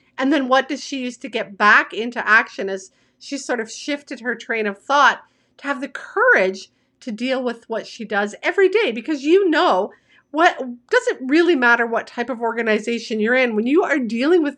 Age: 50-69